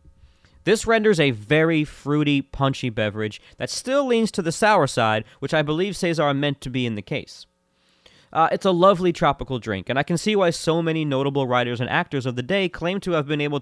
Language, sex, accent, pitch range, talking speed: English, male, American, 110-160 Hz, 215 wpm